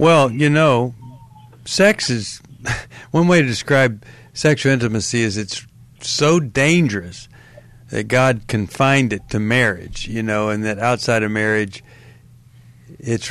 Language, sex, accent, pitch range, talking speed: English, male, American, 115-140 Hz, 125 wpm